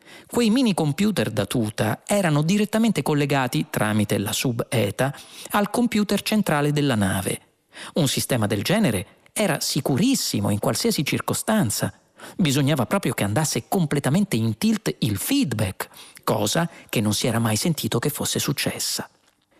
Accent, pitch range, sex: native, 115-170 Hz, male